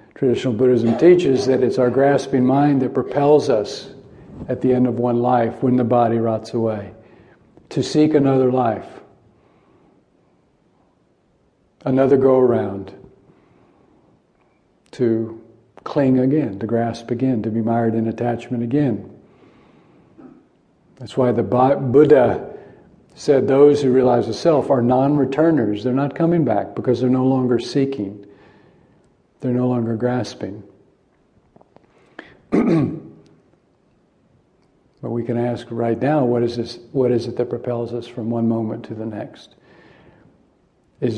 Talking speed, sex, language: 125 wpm, male, English